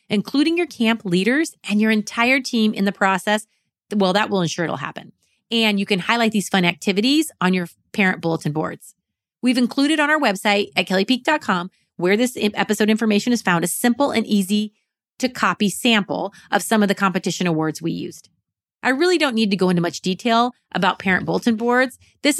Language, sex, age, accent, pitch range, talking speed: English, female, 30-49, American, 180-230 Hz, 190 wpm